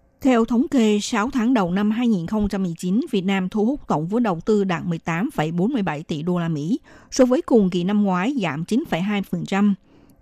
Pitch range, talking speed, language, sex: 180-235 Hz, 175 wpm, Vietnamese, female